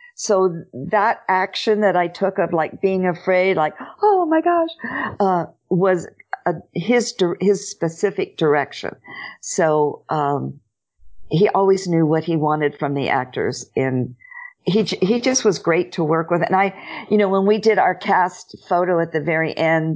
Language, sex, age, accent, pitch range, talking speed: English, female, 50-69, American, 150-190 Hz, 165 wpm